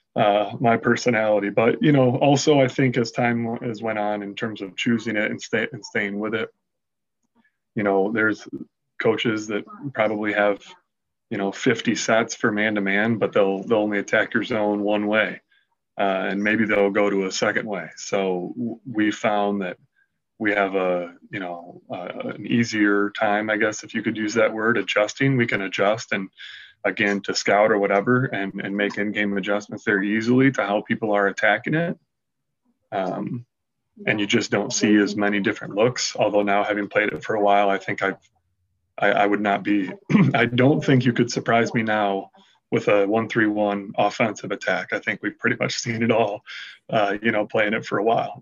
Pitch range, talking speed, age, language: 100-115 Hz, 190 wpm, 20-39, English